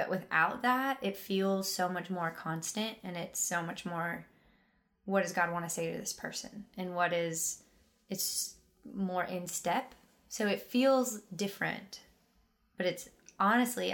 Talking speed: 160 wpm